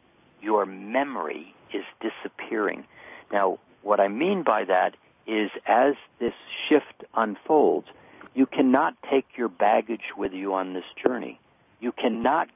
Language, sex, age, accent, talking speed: English, male, 60-79, American, 130 wpm